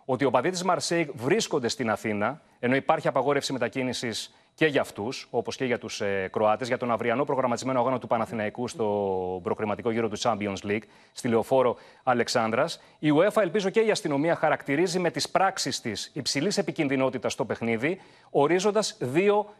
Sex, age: male, 30-49